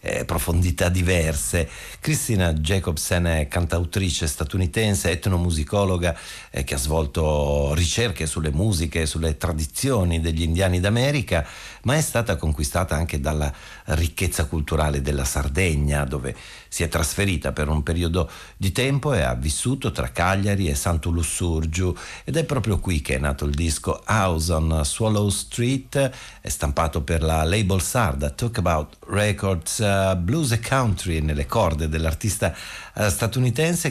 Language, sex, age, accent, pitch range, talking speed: Italian, male, 50-69, native, 80-105 Hz, 135 wpm